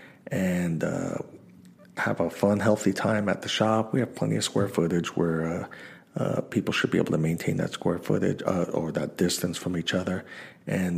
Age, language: 40-59, English